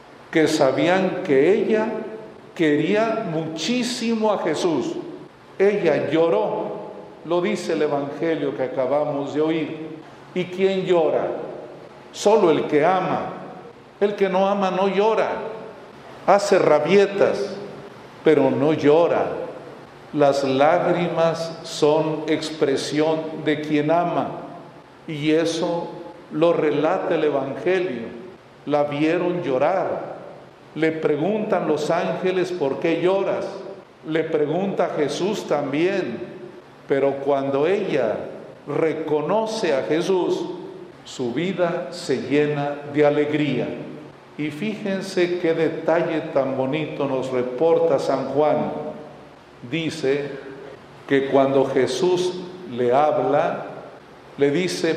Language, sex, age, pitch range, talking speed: Spanish, male, 50-69, 150-180 Hz, 100 wpm